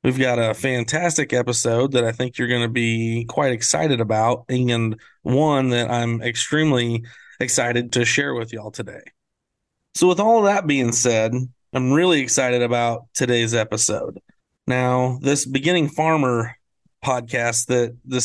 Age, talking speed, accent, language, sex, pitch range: 30-49, 150 wpm, American, English, male, 120-140 Hz